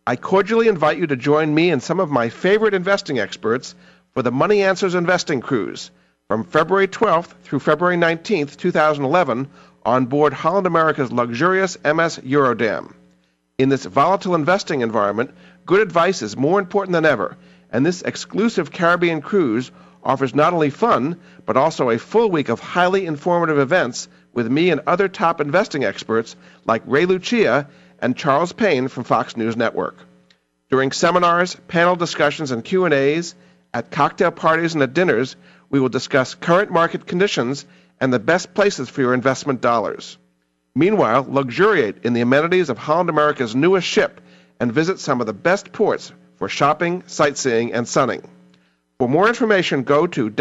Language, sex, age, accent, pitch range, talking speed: English, male, 50-69, American, 120-180 Hz, 160 wpm